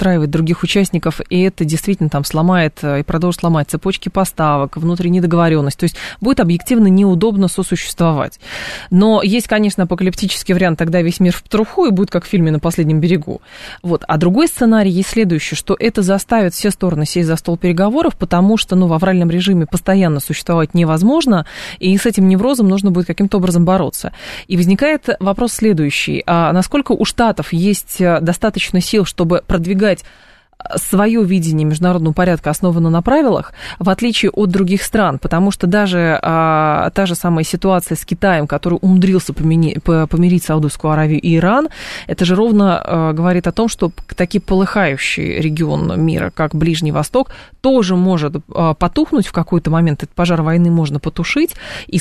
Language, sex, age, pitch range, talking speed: Russian, female, 20-39, 165-200 Hz, 165 wpm